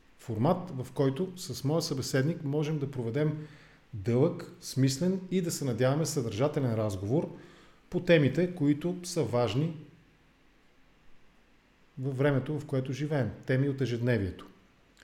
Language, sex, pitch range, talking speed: English, male, 120-150 Hz, 120 wpm